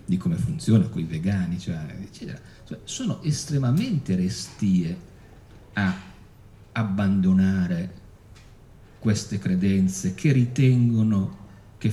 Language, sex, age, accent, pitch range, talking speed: Italian, male, 50-69, native, 90-125 Hz, 85 wpm